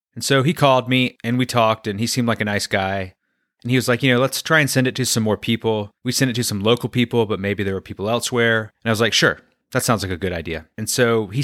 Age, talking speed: 30-49, 300 wpm